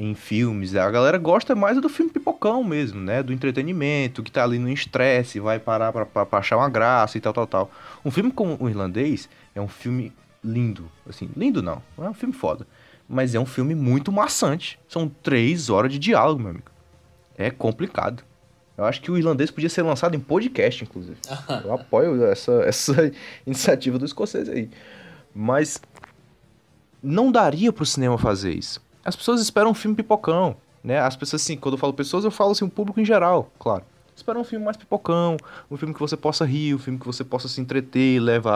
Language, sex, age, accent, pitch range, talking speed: Portuguese, male, 20-39, Brazilian, 120-165 Hz, 200 wpm